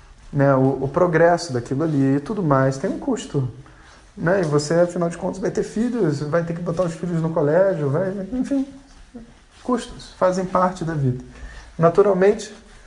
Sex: male